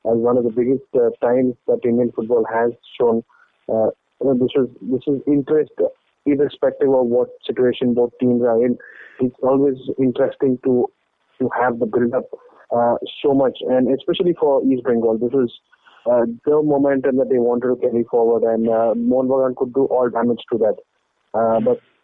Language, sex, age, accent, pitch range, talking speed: English, male, 30-49, Indian, 120-145 Hz, 175 wpm